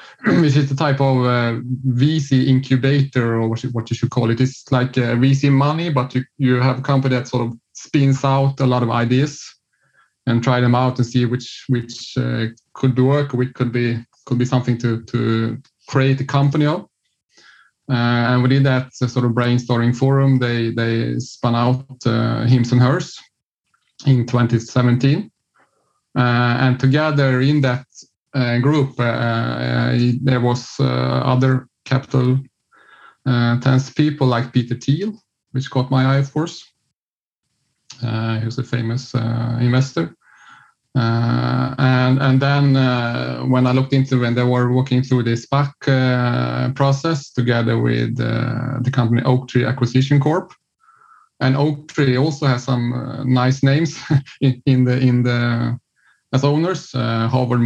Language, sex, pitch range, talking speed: Danish, male, 120-135 Hz, 160 wpm